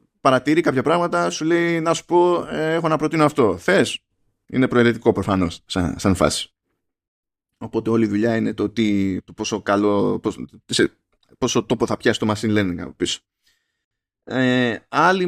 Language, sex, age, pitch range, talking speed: Greek, male, 20-39, 110-145 Hz, 140 wpm